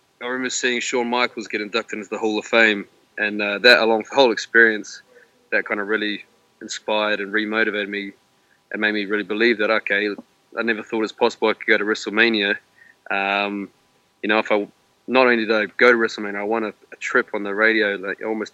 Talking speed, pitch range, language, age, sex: 225 wpm, 105-115 Hz, English, 20-39, male